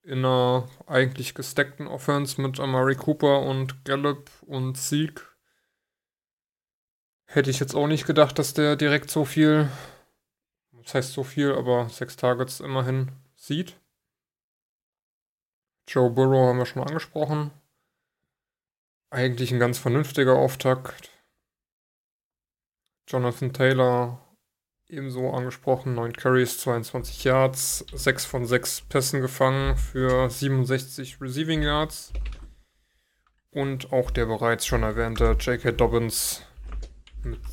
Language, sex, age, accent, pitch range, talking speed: German, male, 20-39, German, 120-140 Hz, 110 wpm